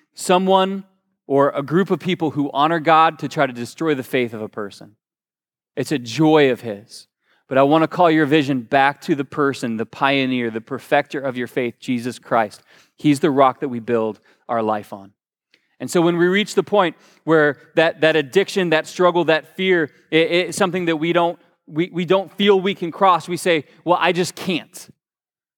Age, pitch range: 20-39, 145-190 Hz